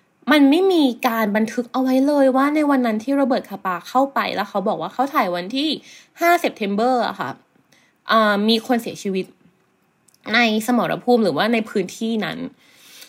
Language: Thai